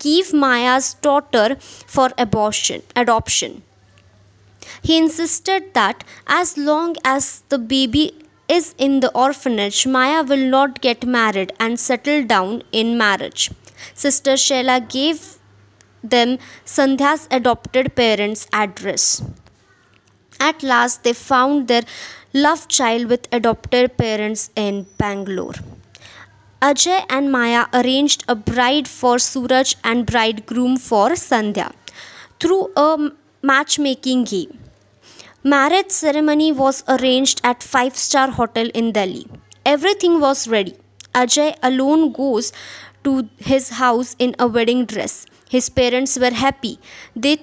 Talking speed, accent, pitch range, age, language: 115 wpm, Indian, 230-285 Hz, 20-39, English